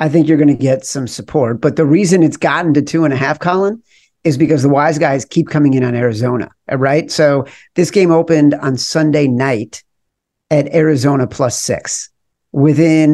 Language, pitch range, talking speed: English, 135-165 Hz, 190 wpm